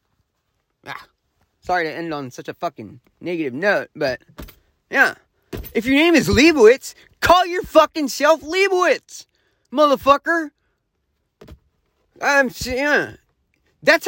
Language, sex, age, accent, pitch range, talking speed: English, male, 30-49, American, 180-295 Hz, 115 wpm